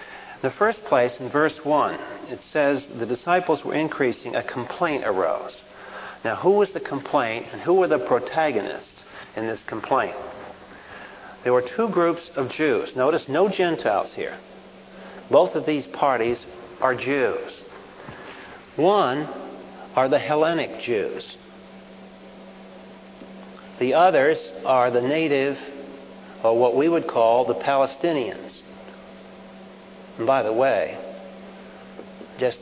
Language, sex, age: English, male, 50-69